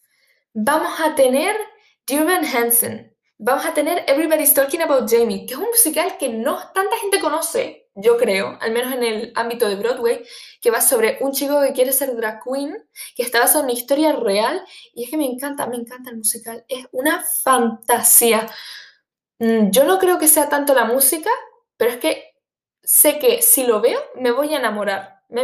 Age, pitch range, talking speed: 10-29, 230-330 Hz, 190 wpm